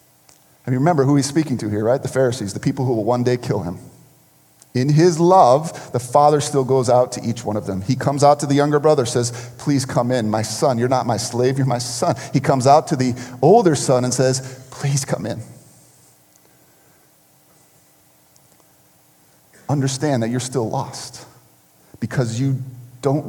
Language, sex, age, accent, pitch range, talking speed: English, male, 40-59, American, 110-145 Hz, 185 wpm